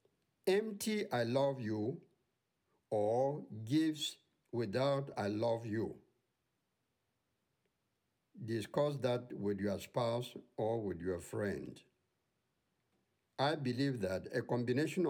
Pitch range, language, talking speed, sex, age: 110-150 Hz, English, 95 wpm, male, 60-79